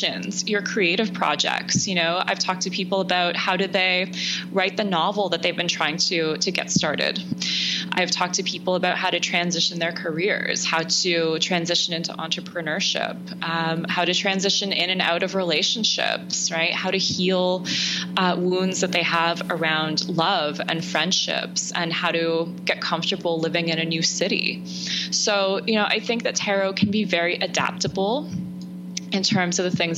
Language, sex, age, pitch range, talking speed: English, female, 20-39, 170-190 Hz, 175 wpm